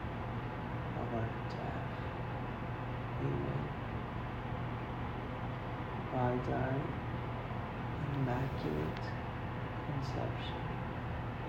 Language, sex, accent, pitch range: English, male, American, 120-125 Hz